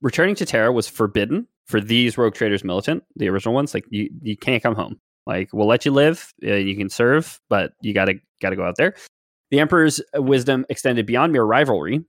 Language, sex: English, male